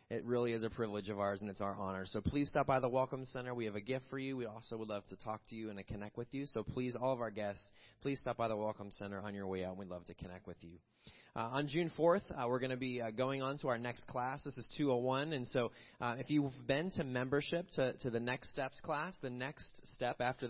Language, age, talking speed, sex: English, 30-49, 280 wpm, male